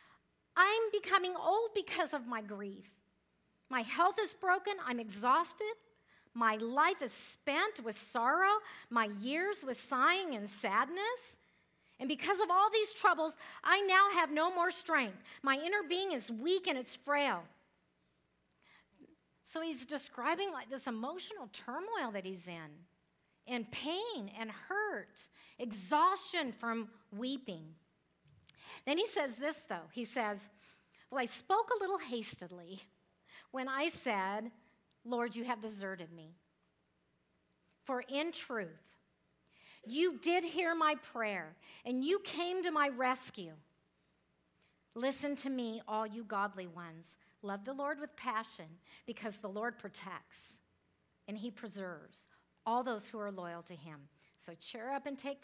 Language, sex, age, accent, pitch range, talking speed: English, female, 50-69, American, 205-325 Hz, 140 wpm